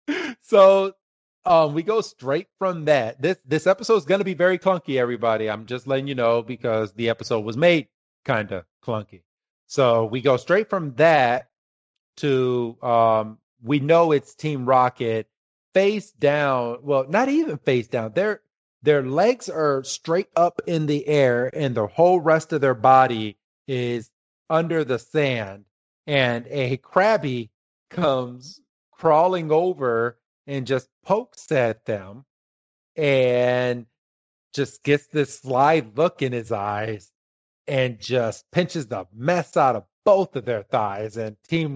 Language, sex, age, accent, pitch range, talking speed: English, male, 30-49, American, 120-160 Hz, 150 wpm